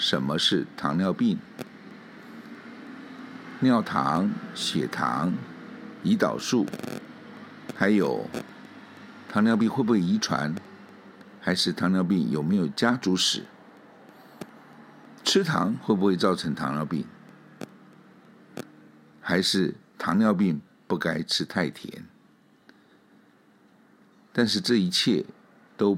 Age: 60-79